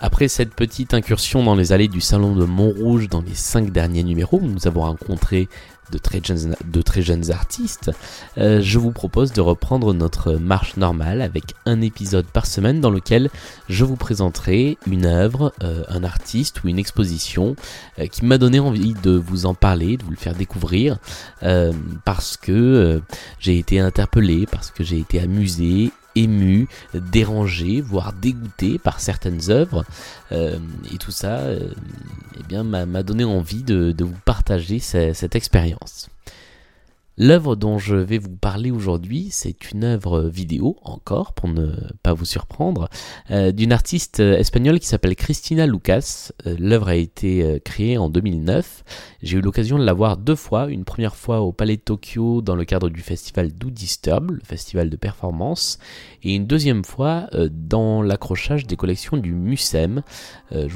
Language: French